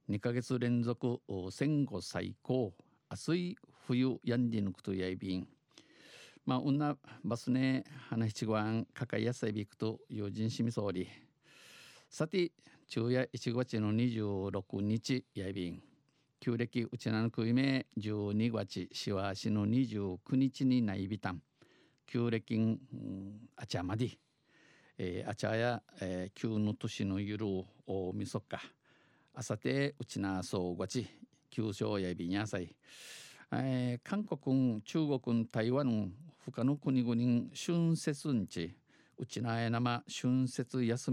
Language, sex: Japanese, male